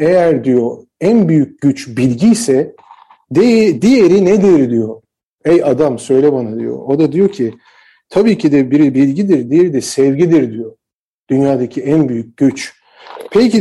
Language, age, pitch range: Turkish, 50-69, 145-185 Hz